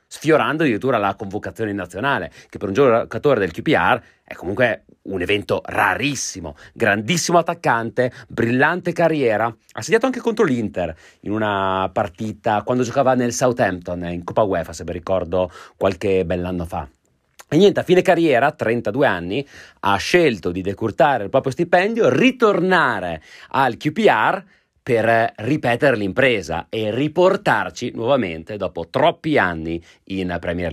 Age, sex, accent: 30-49, male, native